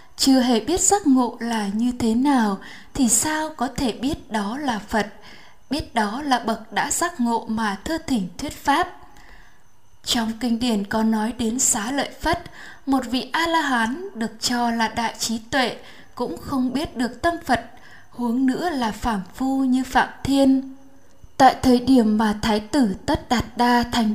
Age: 10-29